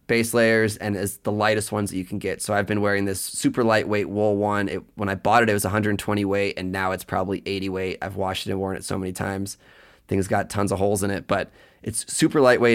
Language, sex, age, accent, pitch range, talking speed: English, male, 20-39, American, 95-110 Hz, 260 wpm